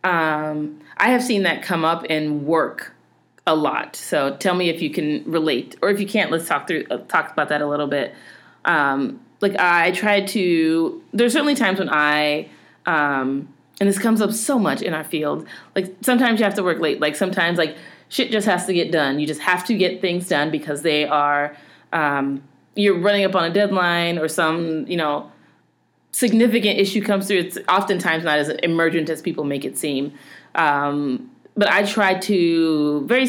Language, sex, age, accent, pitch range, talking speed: English, female, 30-49, American, 150-200 Hz, 195 wpm